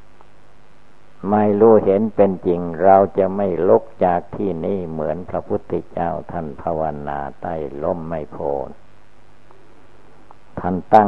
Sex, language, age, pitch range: male, Thai, 60-79, 80-100 Hz